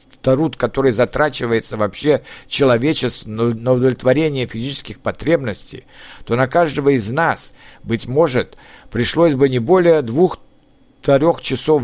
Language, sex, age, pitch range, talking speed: Russian, male, 60-79, 120-155 Hz, 110 wpm